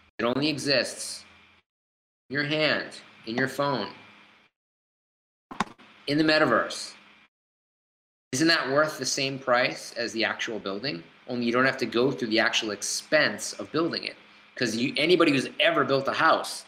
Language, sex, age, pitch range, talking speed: English, male, 30-49, 105-135 Hz, 150 wpm